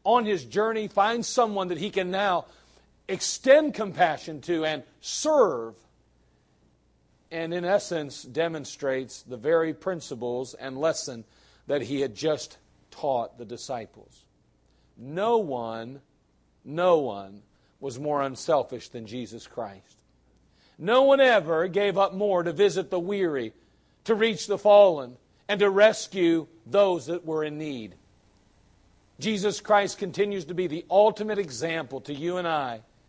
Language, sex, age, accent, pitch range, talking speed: English, male, 50-69, American, 135-205 Hz, 135 wpm